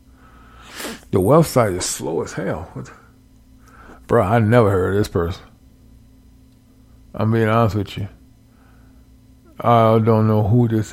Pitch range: 105-125 Hz